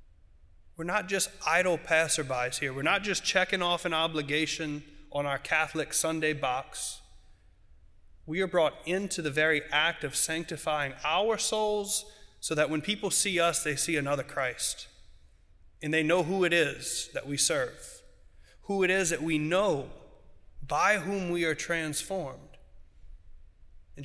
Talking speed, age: 150 wpm, 30-49